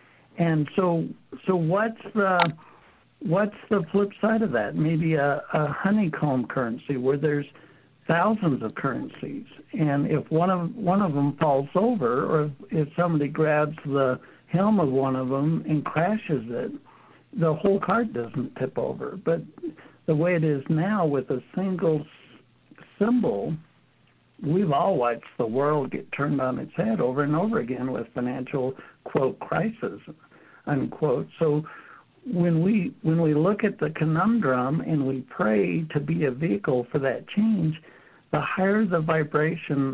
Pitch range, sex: 145-185 Hz, male